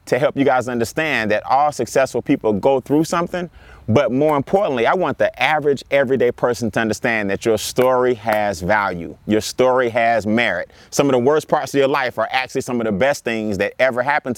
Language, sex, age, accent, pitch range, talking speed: English, male, 30-49, American, 115-155 Hz, 210 wpm